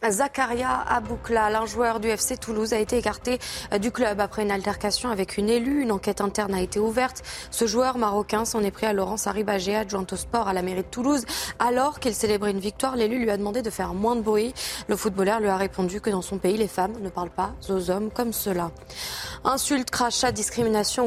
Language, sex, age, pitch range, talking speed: French, female, 20-39, 200-235 Hz, 215 wpm